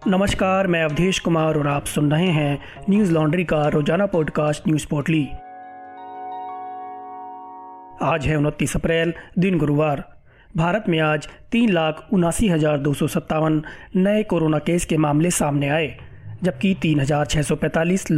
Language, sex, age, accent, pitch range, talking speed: Hindi, male, 30-49, native, 155-185 Hz, 120 wpm